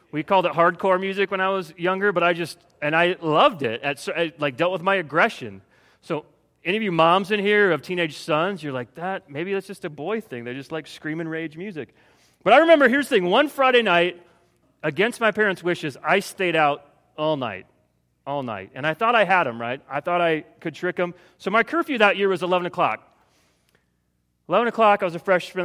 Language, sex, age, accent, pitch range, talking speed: English, male, 30-49, American, 145-195 Hz, 220 wpm